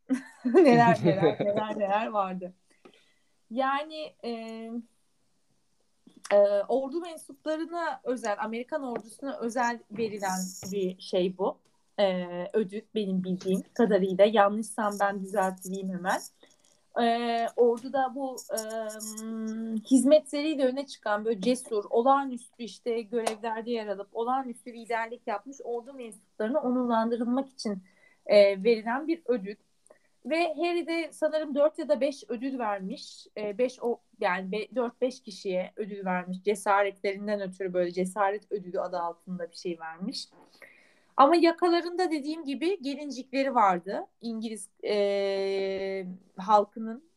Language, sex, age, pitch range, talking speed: Turkish, female, 30-49, 200-265 Hz, 115 wpm